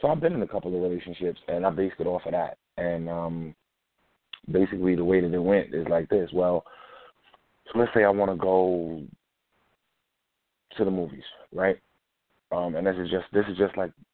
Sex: male